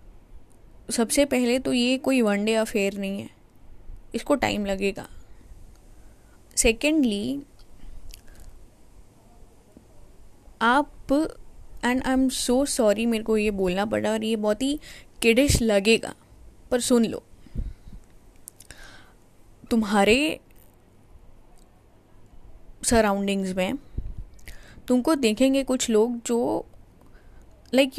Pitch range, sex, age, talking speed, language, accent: 195-255 Hz, female, 10-29, 90 wpm, Hindi, native